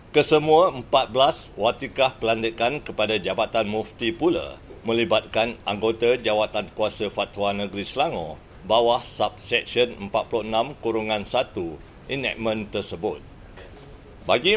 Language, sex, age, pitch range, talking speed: Malay, male, 50-69, 100-115 Hz, 85 wpm